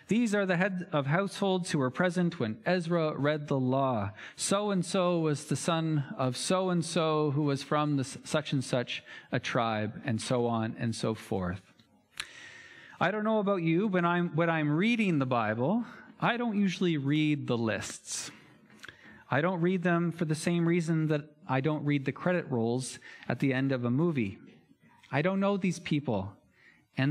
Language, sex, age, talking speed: English, male, 40-59, 170 wpm